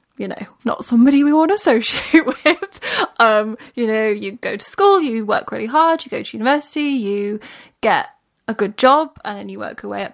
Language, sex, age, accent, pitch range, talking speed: English, female, 10-29, British, 210-255 Hz, 215 wpm